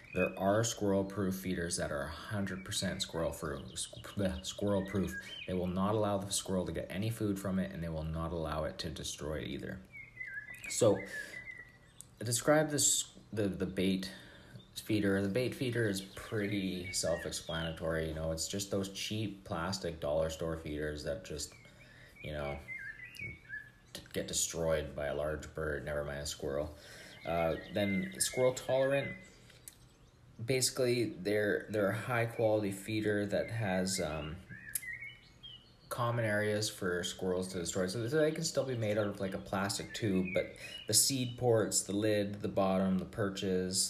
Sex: male